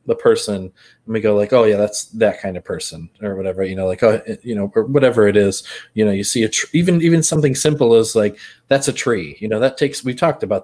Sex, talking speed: male, 260 wpm